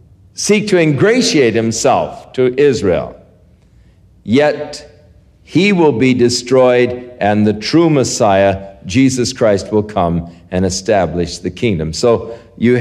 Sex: male